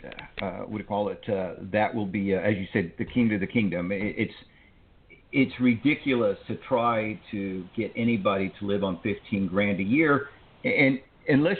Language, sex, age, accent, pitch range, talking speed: English, male, 50-69, American, 115-150 Hz, 175 wpm